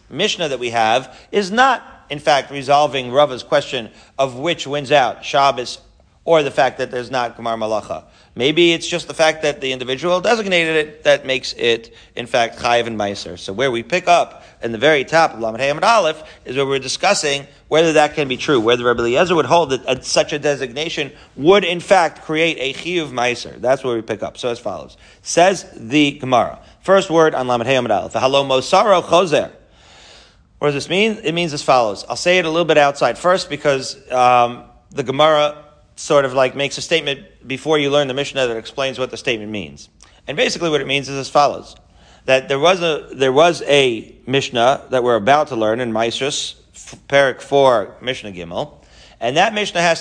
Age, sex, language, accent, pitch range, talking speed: 40-59, male, English, American, 120-160 Hz, 200 wpm